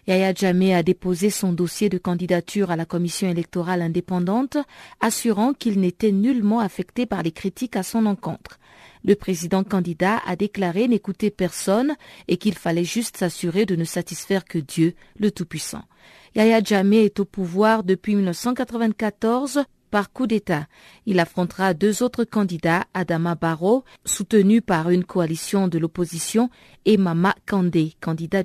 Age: 40-59